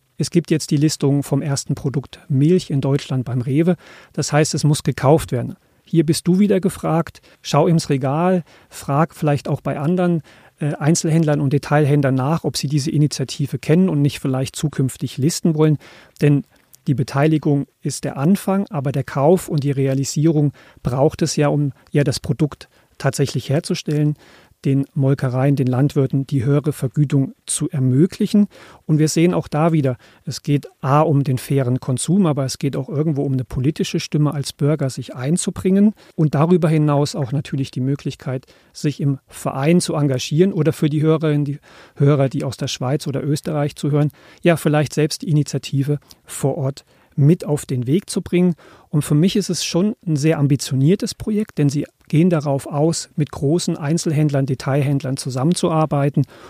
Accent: German